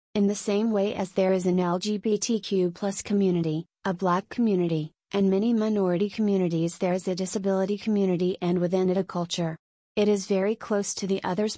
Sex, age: female, 30-49